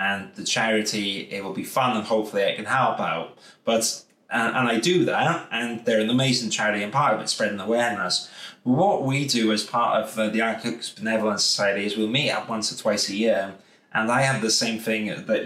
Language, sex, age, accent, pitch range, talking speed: English, male, 20-39, British, 105-125 Hz, 220 wpm